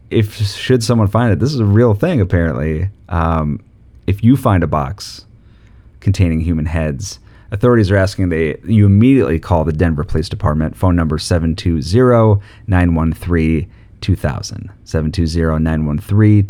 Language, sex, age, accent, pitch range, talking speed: English, male, 30-49, American, 85-110 Hz, 130 wpm